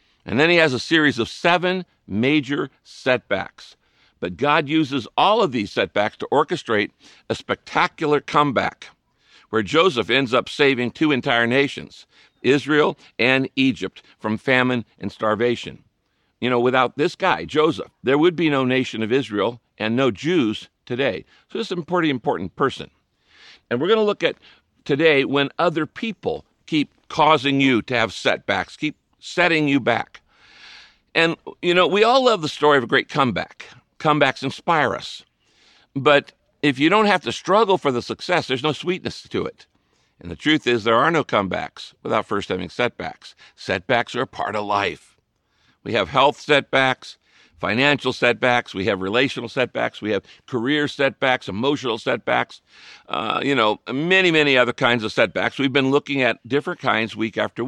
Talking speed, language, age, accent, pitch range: 170 wpm, English, 60-79, American, 120-155 Hz